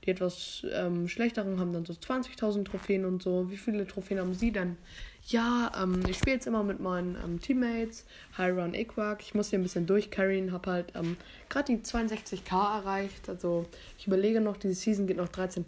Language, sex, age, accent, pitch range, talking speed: German, female, 20-39, German, 180-215 Hz, 195 wpm